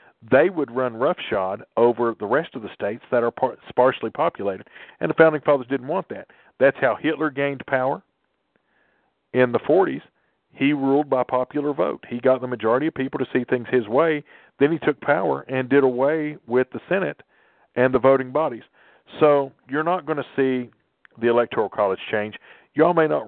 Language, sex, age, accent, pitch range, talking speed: English, male, 50-69, American, 115-140 Hz, 185 wpm